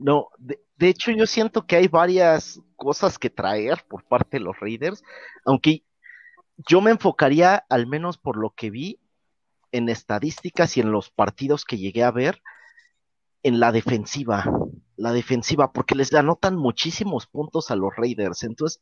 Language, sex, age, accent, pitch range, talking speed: Spanish, male, 40-59, Mexican, 120-170 Hz, 165 wpm